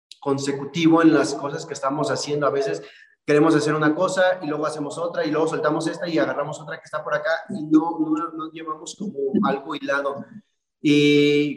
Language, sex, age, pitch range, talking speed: Spanish, male, 30-49, 145-205 Hz, 190 wpm